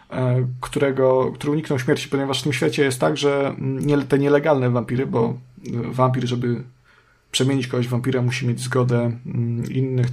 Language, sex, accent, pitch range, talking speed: Polish, male, native, 125-140 Hz, 155 wpm